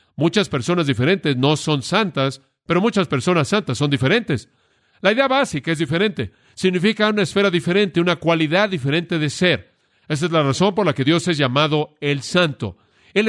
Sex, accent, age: male, Mexican, 50-69